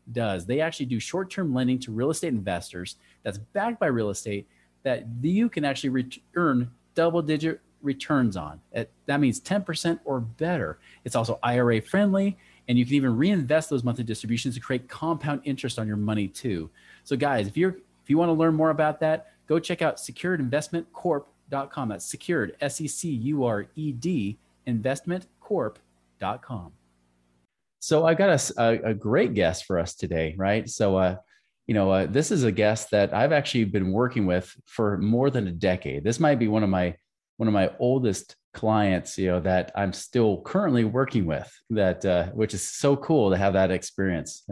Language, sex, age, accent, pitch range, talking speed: English, male, 40-59, American, 95-140 Hz, 175 wpm